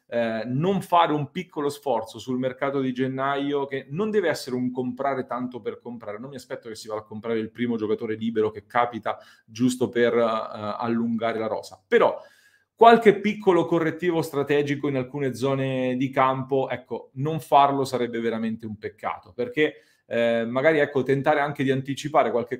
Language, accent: Italian, native